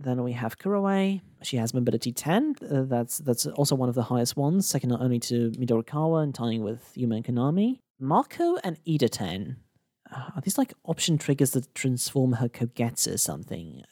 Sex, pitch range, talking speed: male, 120-160 Hz, 185 wpm